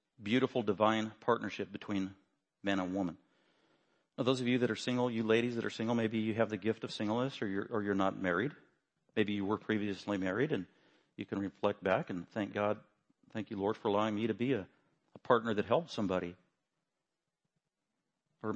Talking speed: 190 wpm